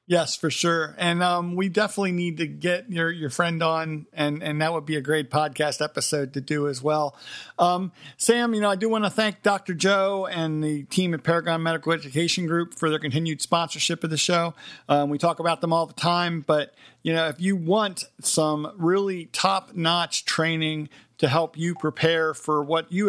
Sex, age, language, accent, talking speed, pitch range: male, 50-69, English, American, 205 wpm, 150-175 Hz